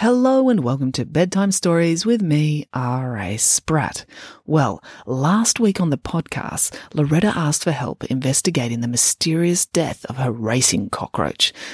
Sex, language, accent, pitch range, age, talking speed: female, English, Australian, 135-200 Hz, 30-49, 145 wpm